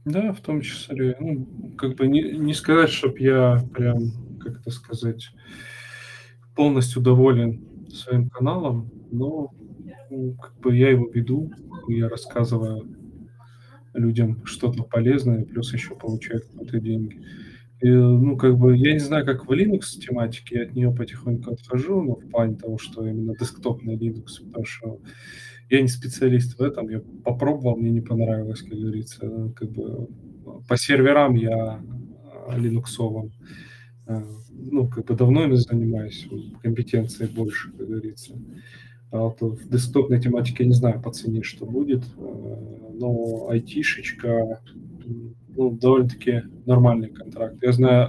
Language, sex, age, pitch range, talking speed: Russian, male, 20-39, 115-130 Hz, 140 wpm